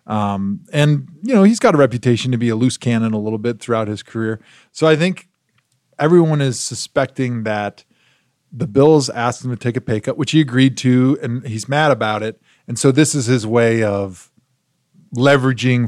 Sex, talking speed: male, 195 wpm